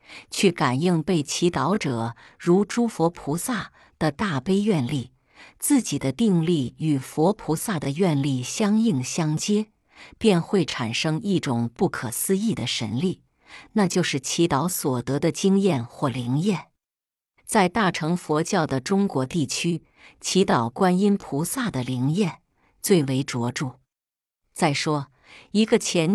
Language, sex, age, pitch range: Chinese, female, 50-69, 135-195 Hz